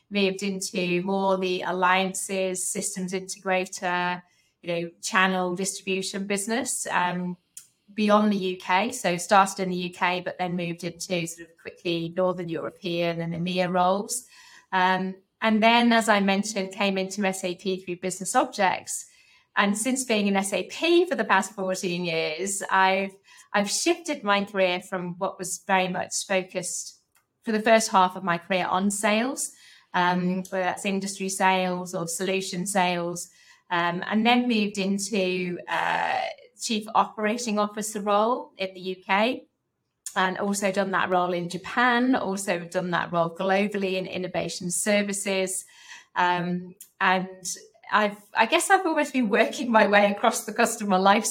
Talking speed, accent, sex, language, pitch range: 145 wpm, British, female, English, 180-205 Hz